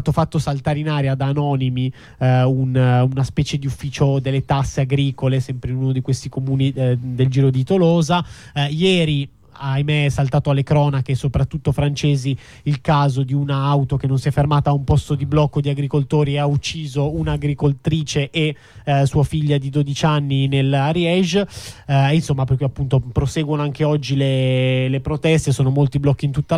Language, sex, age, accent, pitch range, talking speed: Italian, male, 20-39, native, 135-150 Hz, 175 wpm